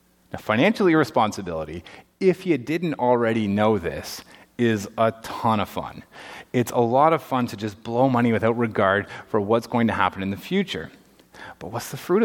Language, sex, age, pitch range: English, male, 30-49, 105-135 Hz